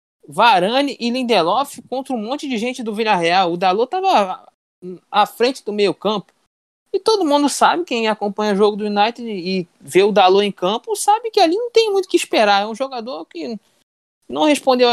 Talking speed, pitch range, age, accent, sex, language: 195 wpm, 185-255 Hz, 20-39, Brazilian, male, Portuguese